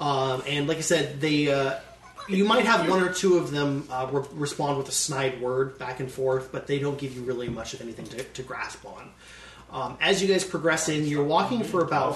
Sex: male